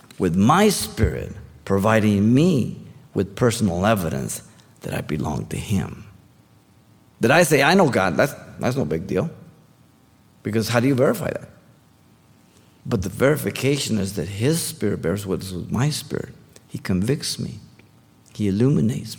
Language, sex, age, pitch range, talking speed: English, male, 50-69, 100-130 Hz, 145 wpm